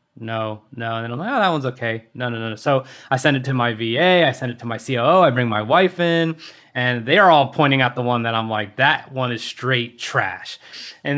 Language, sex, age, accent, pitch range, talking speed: English, male, 20-39, American, 125-170 Hz, 250 wpm